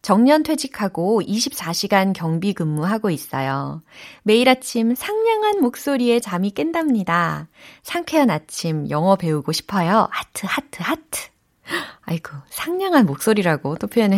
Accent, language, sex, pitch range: native, Korean, female, 170-260 Hz